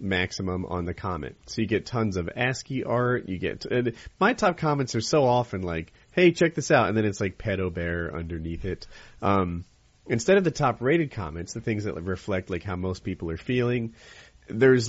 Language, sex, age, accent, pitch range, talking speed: English, male, 30-49, American, 95-130 Hz, 200 wpm